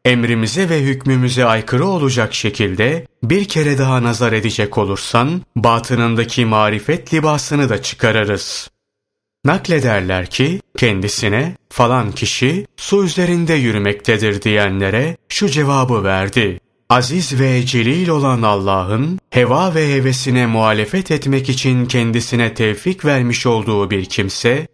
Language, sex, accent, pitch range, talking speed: Turkish, male, native, 110-140 Hz, 110 wpm